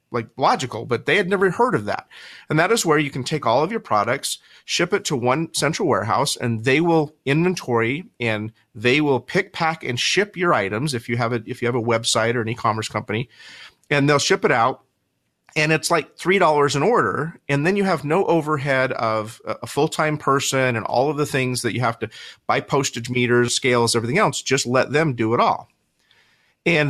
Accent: American